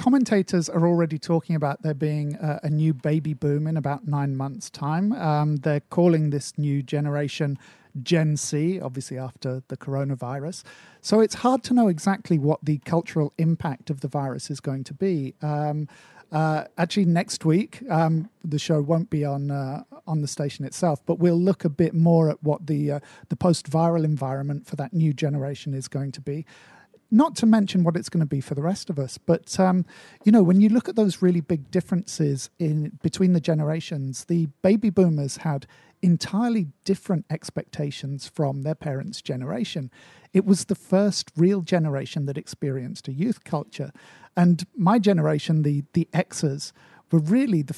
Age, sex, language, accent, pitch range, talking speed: 50-69, male, English, British, 145-180 Hz, 180 wpm